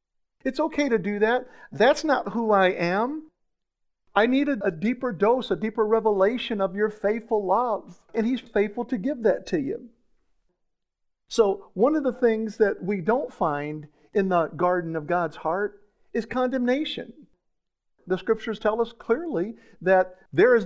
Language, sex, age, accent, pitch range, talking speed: English, male, 50-69, American, 185-255 Hz, 160 wpm